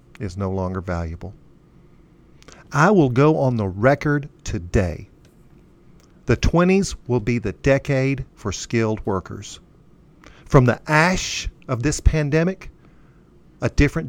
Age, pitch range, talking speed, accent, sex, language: 50-69, 105-150 Hz, 120 wpm, American, male, English